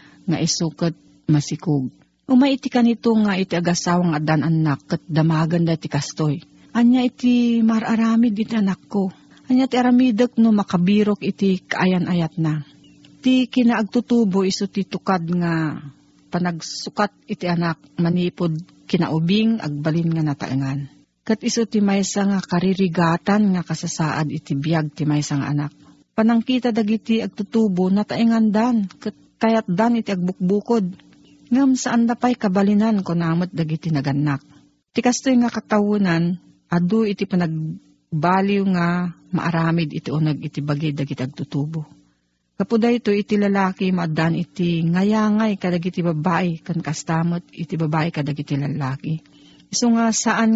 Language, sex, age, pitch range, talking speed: Filipino, female, 50-69, 160-215 Hz, 125 wpm